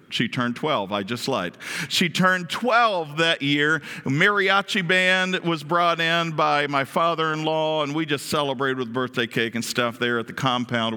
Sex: male